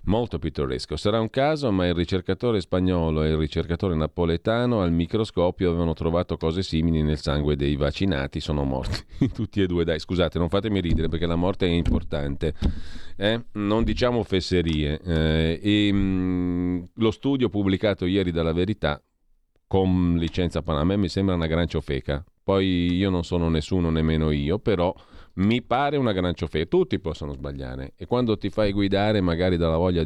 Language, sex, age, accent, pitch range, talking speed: Italian, male, 40-59, native, 80-95 Hz, 165 wpm